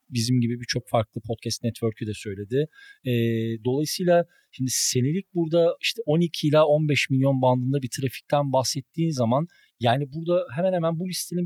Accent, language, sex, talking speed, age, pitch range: native, Turkish, male, 150 wpm, 40-59, 120-155 Hz